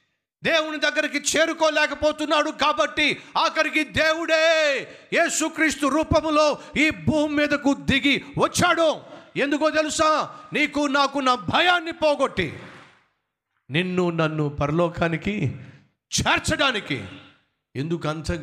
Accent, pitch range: native, 125-185 Hz